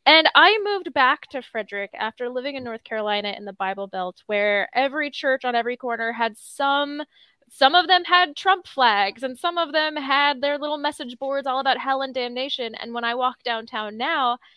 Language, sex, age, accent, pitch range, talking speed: English, female, 10-29, American, 230-290 Hz, 200 wpm